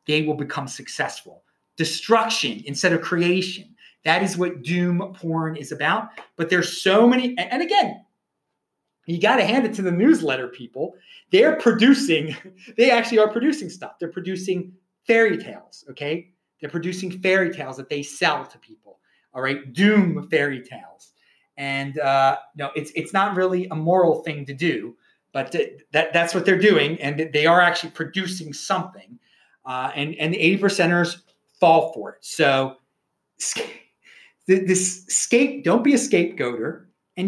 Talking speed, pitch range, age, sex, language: 160 wpm, 150-200 Hz, 30-49, male, English